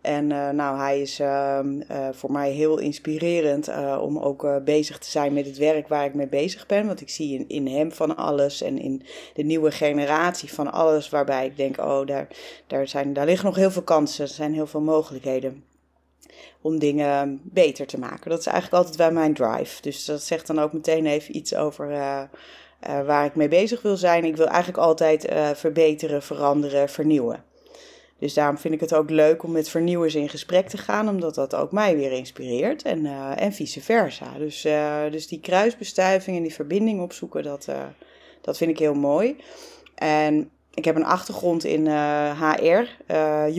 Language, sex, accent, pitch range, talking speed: Dutch, female, Dutch, 145-170 Hz, 200 wpm